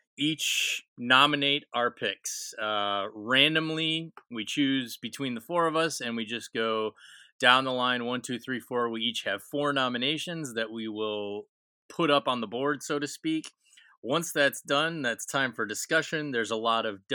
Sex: male